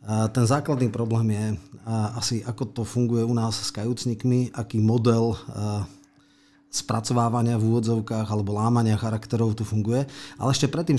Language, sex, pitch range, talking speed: Slovak, male, 110-125 Hz, 135 wpm